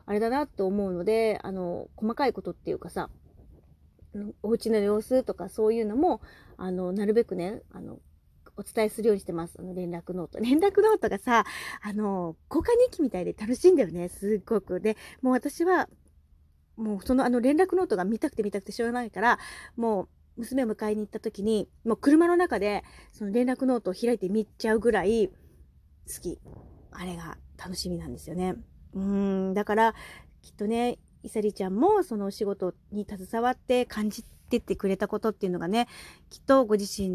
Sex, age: female, 30-49